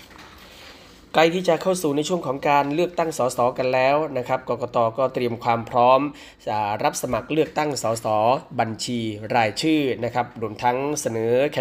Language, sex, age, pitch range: Thai, male, 20-39, 115-140 Hz